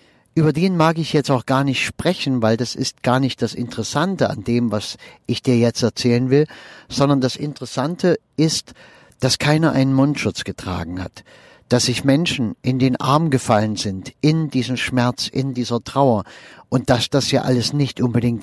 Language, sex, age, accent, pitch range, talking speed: German, male, 50-69, German, 110-140 Hz, 180 wpm